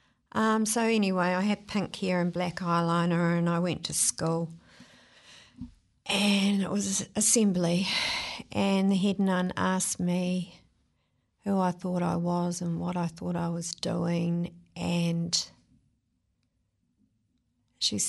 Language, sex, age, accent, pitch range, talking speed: English, female, 50-69, Australian, 170-195 Hz, 130 wpm